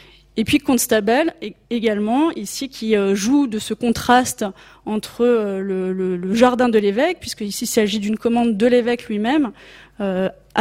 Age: 20-39